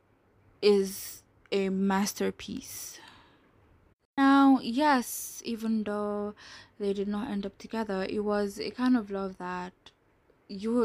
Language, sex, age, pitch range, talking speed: English, female, 10-29, 185-235 Hz, 115 wpm